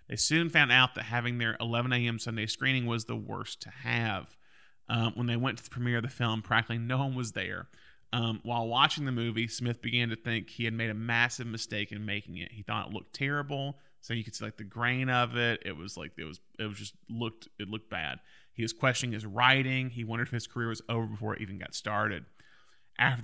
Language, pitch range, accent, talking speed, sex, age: English, 110-125 Hz, American, 240 wpm, male, 30-49